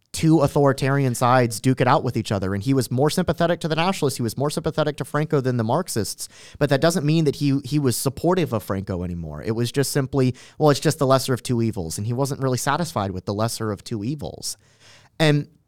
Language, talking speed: English, 235 wpm